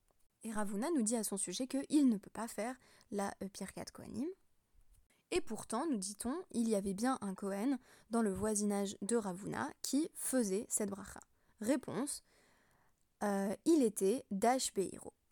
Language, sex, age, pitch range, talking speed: French, female, 20-39, 205-255 Hz, 155 wpm